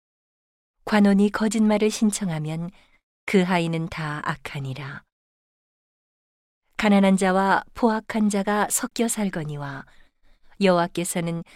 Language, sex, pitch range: Korean, female, 165-205 Hz